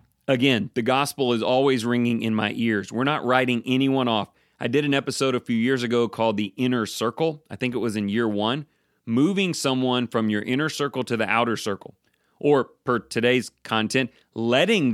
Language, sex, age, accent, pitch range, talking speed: English, male, 30-49, American, 105-135 Hz, 195 wpm